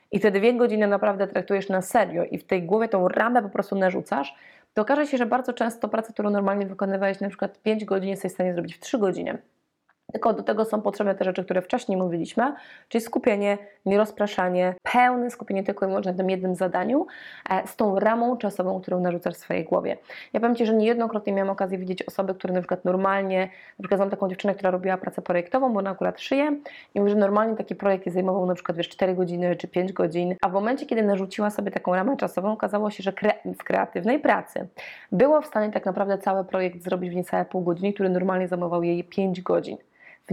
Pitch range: 185-215 Hz